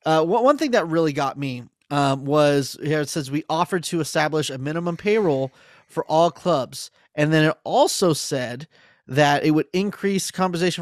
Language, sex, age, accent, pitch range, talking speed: English, male, 30-49, American, 140-185 Hz, 175 wpm